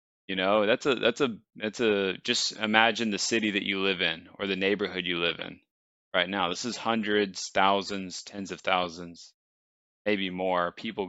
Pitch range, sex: 95-125 Hz, male